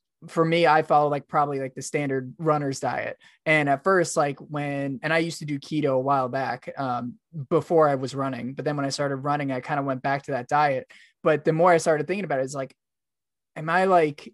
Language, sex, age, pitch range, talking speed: English, male, 20-39, 135-160 Hz, 245 wpm